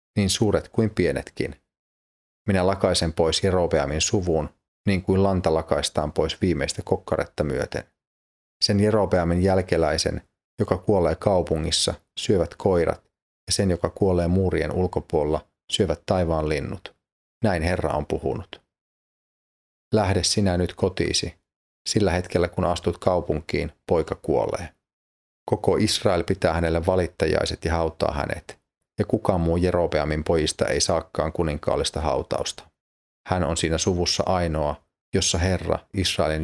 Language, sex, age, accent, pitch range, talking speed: Finnish, male, 30-49, native, 80-95 Hz, 120 wpm